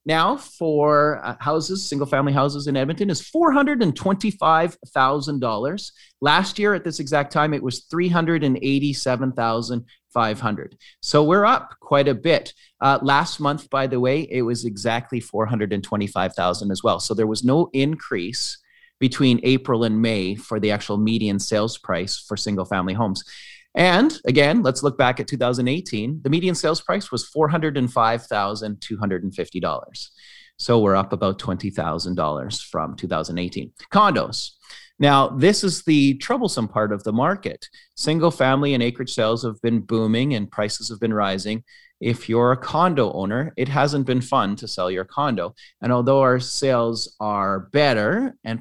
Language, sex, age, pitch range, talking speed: English, male, 30-49, 110-150 Hz, 150 wpm